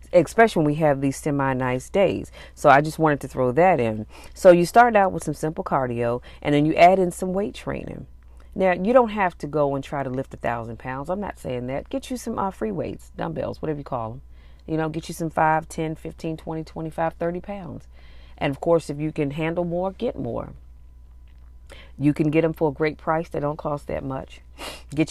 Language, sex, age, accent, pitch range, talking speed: English, female, 40-59, American, 120-170 Hz, 230 wpm